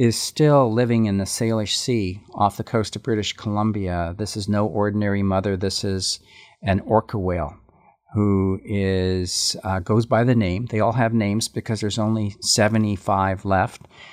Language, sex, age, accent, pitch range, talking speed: English, male, 50-69, American, 95-115 Hz, 160 wpm